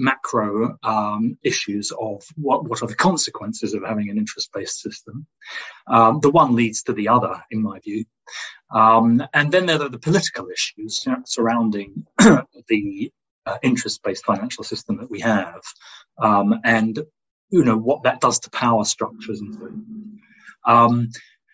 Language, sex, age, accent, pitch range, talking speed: English, male, 30-49, British, 110-175 Hz, 155 wpm